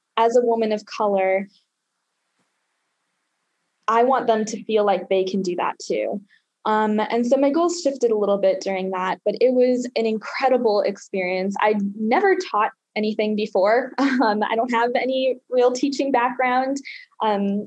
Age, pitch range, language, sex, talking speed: 10-29, 200-245 Hz, English, female, 160 wpm